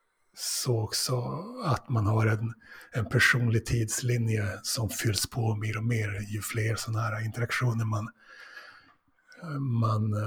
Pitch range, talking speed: 110-125 Hz, 130 wpm